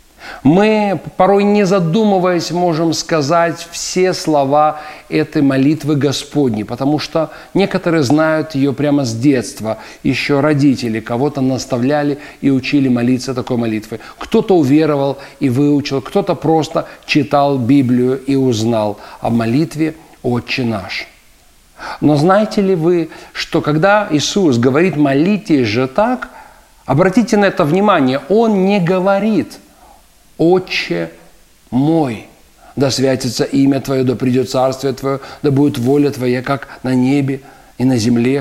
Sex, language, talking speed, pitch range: male, Russian, 125 wpm, 135-185 Hz